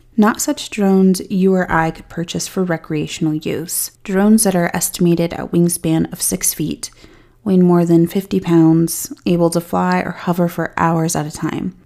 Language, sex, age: English, female, 30-49